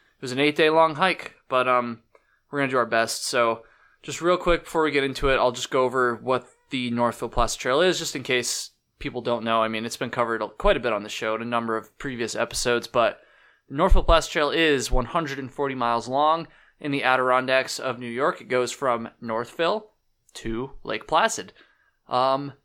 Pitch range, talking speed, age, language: 120-150 Hz, 210 wpm, 20-39, English